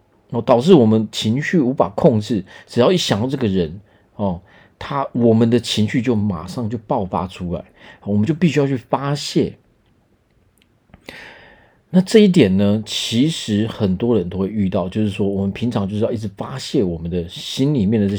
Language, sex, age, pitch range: Chinese, male, 40-59, 95-130 Hz